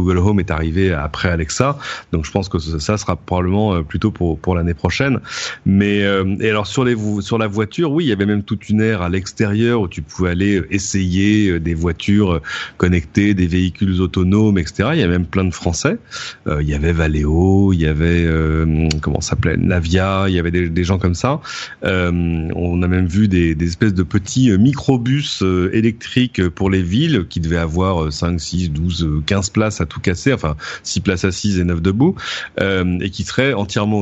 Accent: French